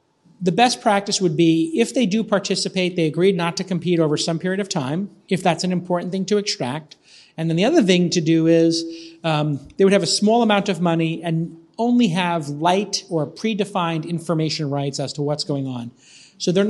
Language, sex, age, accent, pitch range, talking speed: English, male, 40-59, American, 155-190 Hz, 210 wpm